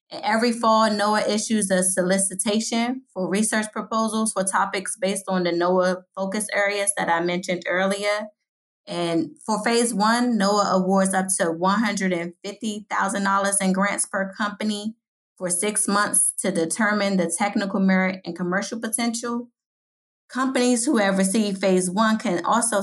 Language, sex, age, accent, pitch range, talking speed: English, female, 20-39, American, 180-210 Hz, 140 wpm